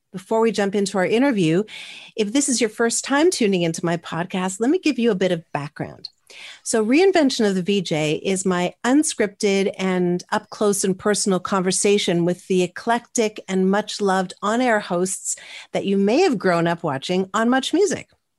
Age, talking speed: 40-59, 175 wpm